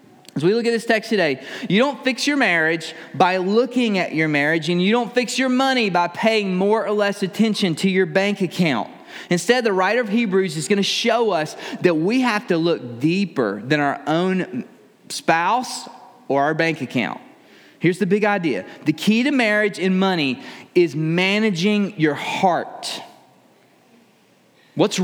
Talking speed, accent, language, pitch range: 170 wpm, American, English, 175-230 Hz